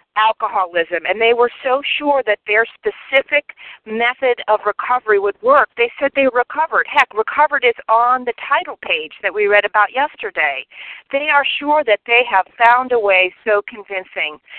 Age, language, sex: 40-59, English, female